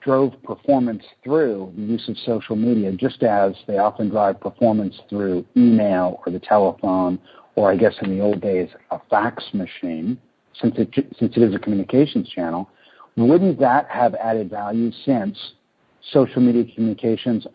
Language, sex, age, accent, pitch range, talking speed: English, male, 50-69, American, 110-130 Hz, 155 wpm